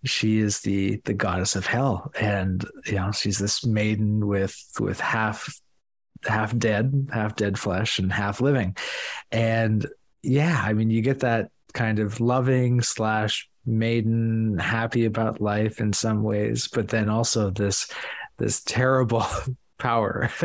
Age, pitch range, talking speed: 30-49, 105-125 Hz, 145 wpm